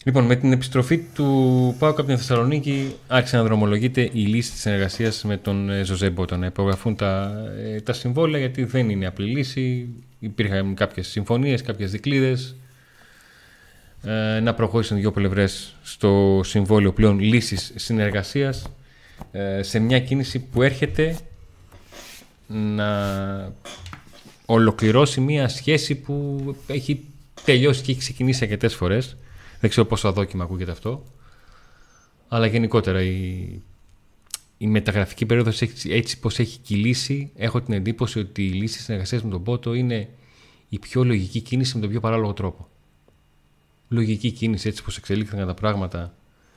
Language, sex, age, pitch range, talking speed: Greek, male, 30-49, 100-130 Hz, 135 wpm